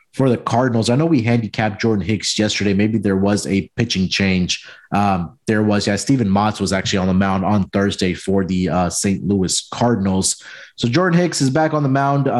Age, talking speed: 30-49, 210 wpm